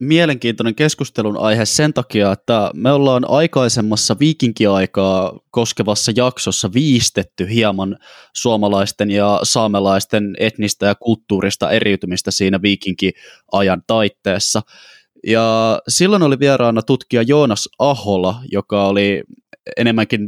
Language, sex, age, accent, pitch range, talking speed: Finnish, male, 20-39, native, 100-120 Hz, 100 wpm